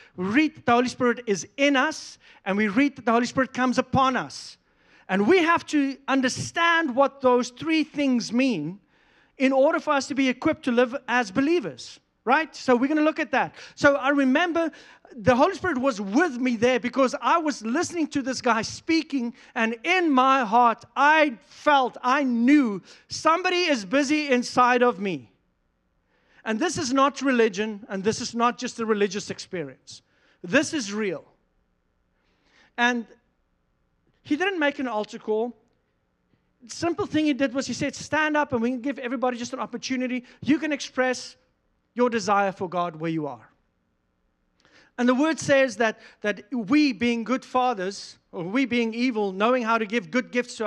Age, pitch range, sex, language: 40-59, 225-285 Hz, male, English